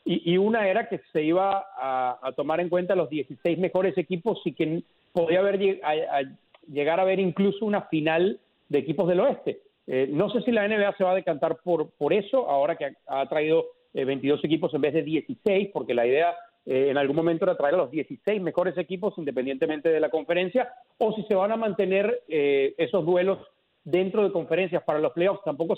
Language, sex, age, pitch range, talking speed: Spanish, male, 40-59, 160-210 Hz, 205 wpm